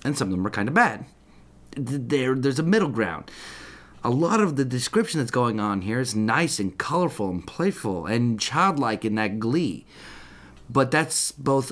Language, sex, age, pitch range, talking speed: English, male, 30-49, 110-150 Hz, 180 wpm